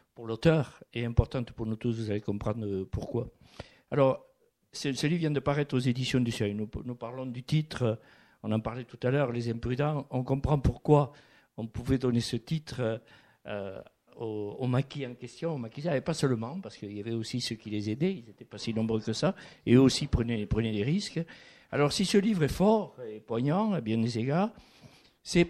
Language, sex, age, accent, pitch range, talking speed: French, male, 60-79, French, 115-150 Hz, 215 wpm